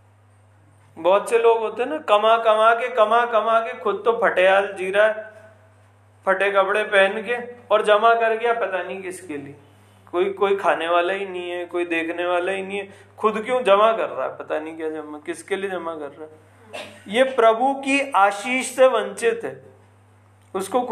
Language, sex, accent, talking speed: Hindi, male, native, 195 wpm